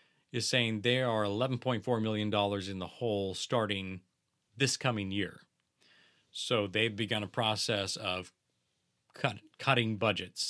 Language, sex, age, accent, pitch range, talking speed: English, male, 30-49, American, 105-130 Hz, 125 wpm